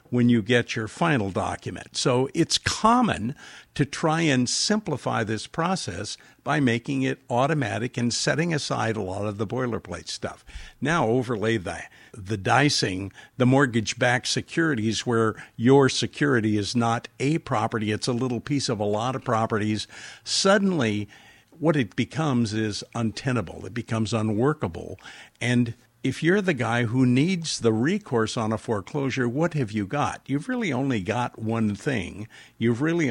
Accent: American